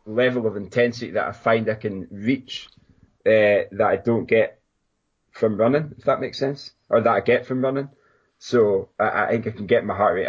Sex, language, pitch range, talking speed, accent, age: male, English, 95-130 Hz, 210 wpm, British, 20-39